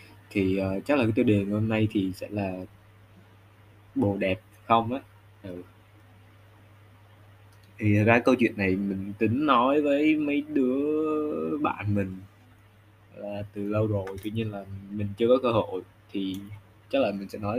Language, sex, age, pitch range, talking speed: Vietnamese, male, 20-39, 100-115 Hz, 165 wpm